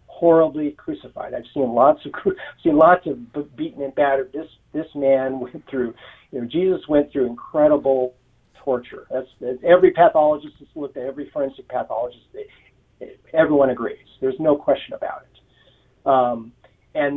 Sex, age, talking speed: male, 50-69, 160 wpm